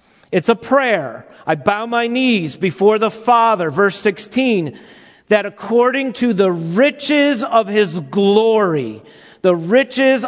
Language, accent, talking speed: English, American, 130 wpm